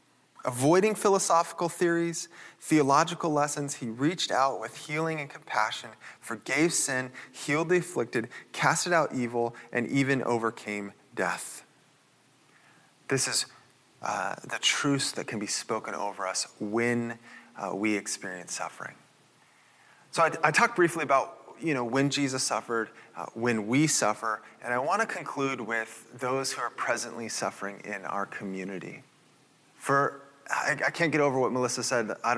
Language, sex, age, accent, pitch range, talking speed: English, male, 30-49, American, 110-145 Hz, 145 wpm